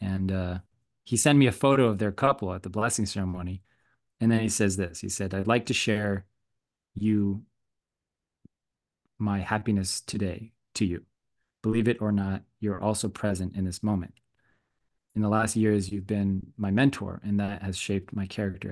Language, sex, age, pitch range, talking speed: English, male, 20-39, 100-115 Hz, 175 wpm